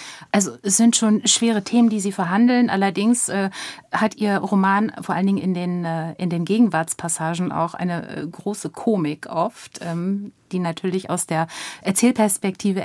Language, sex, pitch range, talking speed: German, female, 170-220 Hz, 155 wpm